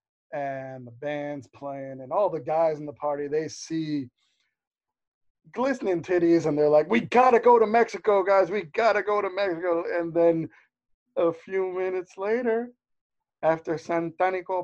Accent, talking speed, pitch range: American, 160 wpm, 140-195 Hz